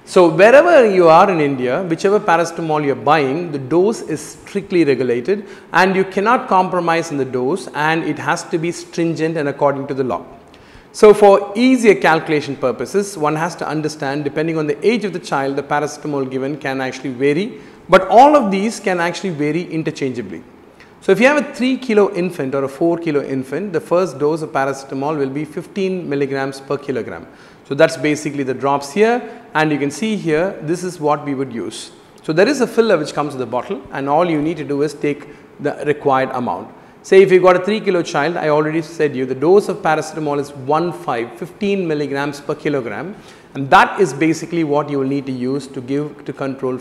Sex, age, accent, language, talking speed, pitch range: male, 40-59, native, Tamil, 210 wpm, 140-185 Hz